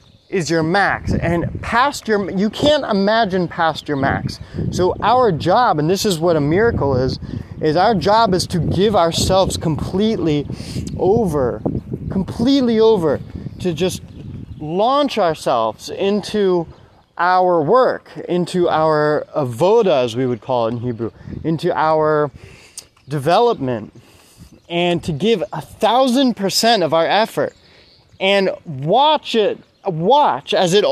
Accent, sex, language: American, male, English